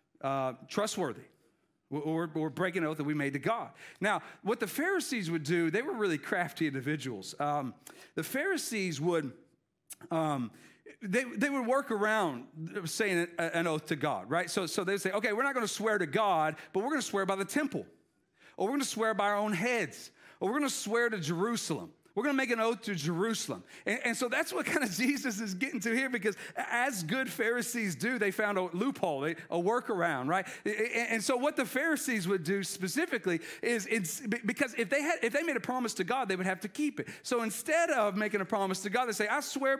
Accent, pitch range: American, 175-250 Hz